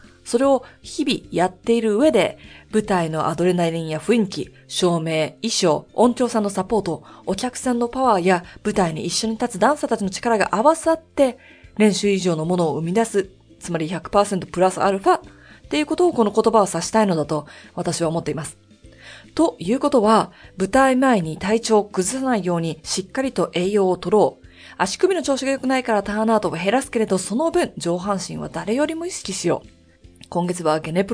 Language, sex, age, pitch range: Japanese, female, 20-39, 175-255 Hz